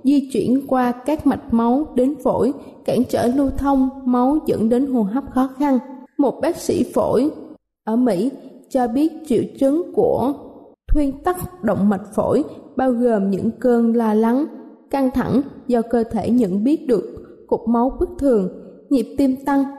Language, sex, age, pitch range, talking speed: Vietnamese, female, 20-39, 235-280 Hz, 170 wpm